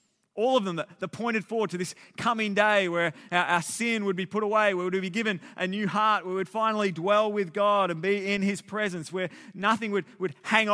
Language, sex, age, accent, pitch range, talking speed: English, male, 30-49, Australian, 145-195 Hz, 240 wpm